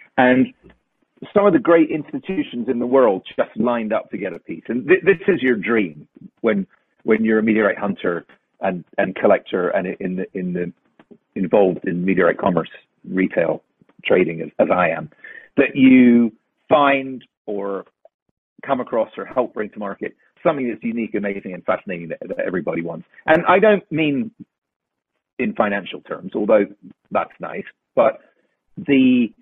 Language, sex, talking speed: English, male, 165 wpm